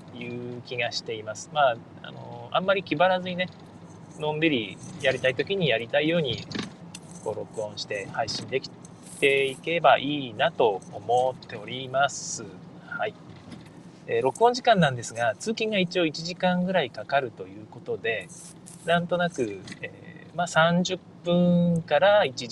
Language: Japanese